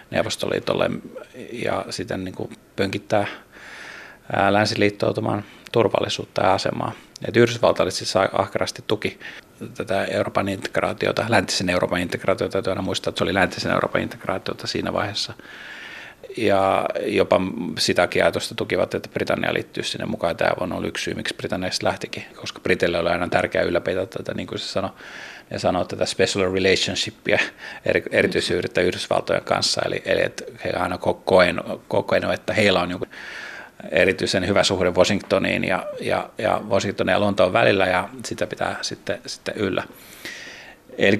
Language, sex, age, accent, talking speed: Finnish, male, 30-49, native, 135 wpm